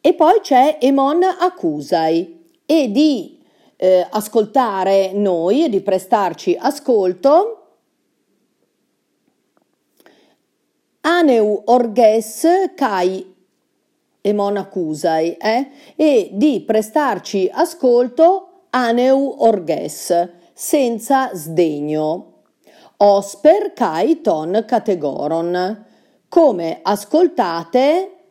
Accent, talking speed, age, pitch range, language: native, 70 wpm, 50-69, 180-280 Hz, Italian